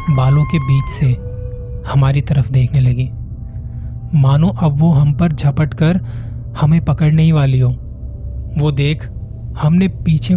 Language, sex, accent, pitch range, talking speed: Hindi, male, native, 125-150 Hz, 140 wpm